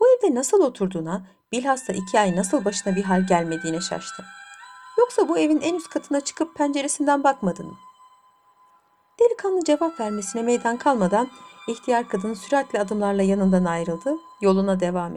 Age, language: 60-79, Turkish